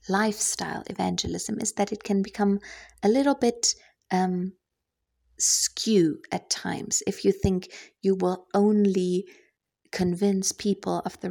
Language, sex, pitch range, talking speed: English, female, 175-205 Hz, 125 wpm